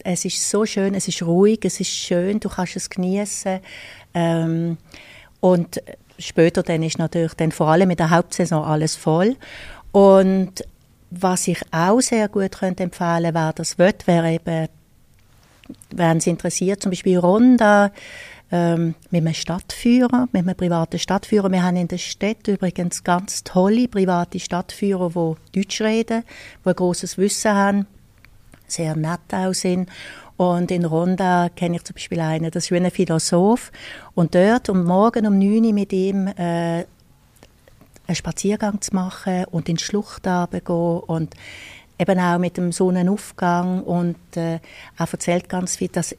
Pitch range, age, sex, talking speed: 170-195 Hz, 60-79, female, 155 wpm